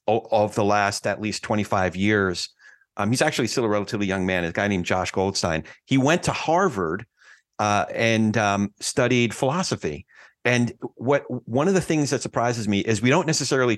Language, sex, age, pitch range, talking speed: English, male, 40-59, 100-130 Hz, 185 wpm